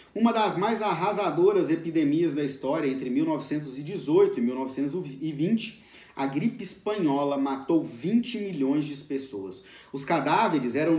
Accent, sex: Brazilian, male